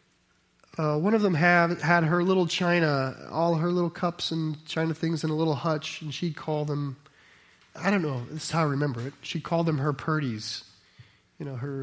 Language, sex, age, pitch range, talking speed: English, male, 30-49, 145-185 Hz, 200 wpm